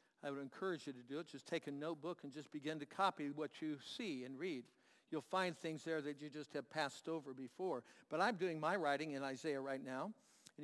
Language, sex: English, male